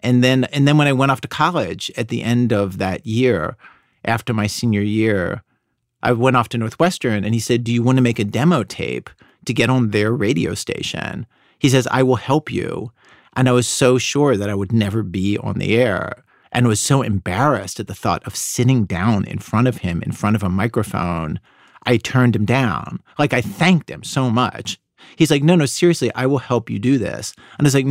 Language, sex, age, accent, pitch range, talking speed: English, male, 40-59, American, 100-130 Hz, 225 wpm